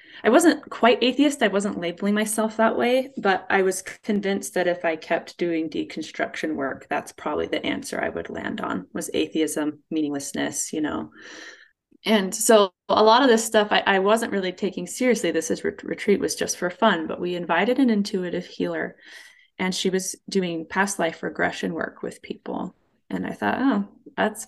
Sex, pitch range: female, 170-225 Hz